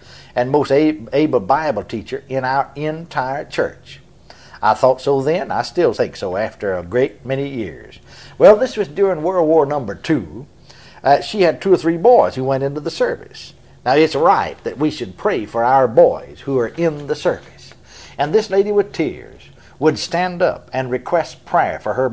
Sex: male